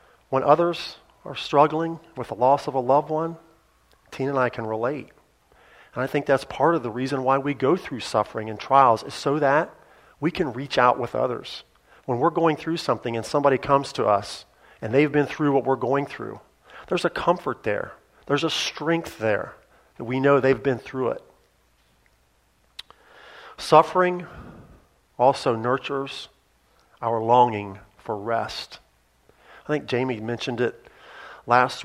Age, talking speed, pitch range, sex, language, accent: 40-59, 160 wpm, 115-145 Hz, male, English, American